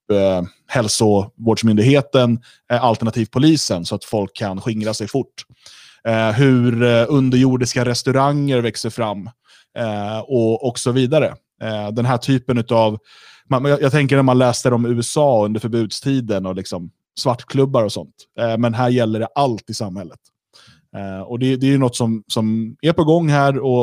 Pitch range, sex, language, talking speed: 110-135 Hz, male, Swedish, 165 wpm